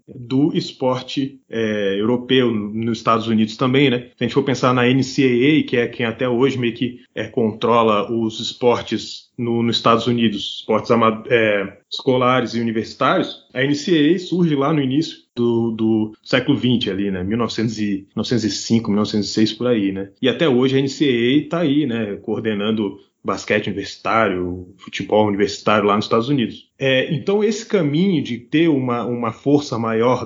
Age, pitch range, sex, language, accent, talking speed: 20-39, 115-140 Hz, male, Portuguese, Brazilian, 145 wpm